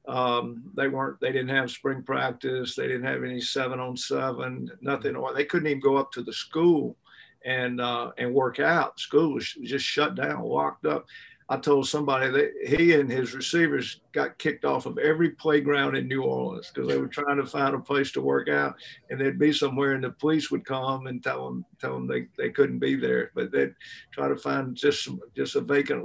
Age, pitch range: 50-69, 125-145 Hz